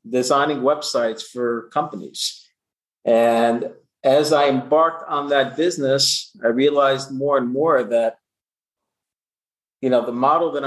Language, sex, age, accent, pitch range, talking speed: English, male, 50-69, American, 120-140 Hz, 125 wpm